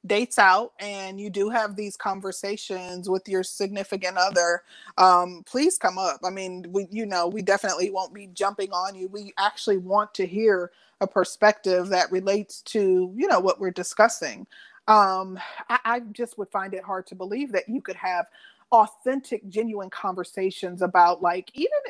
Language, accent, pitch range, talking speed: English, American, 185-225 Hz, 175 wpm